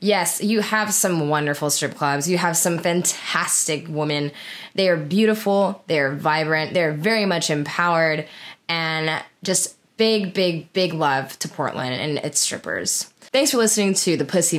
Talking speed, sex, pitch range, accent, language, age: 165 wpm, female, 150-210 Hz, American, English, 10-29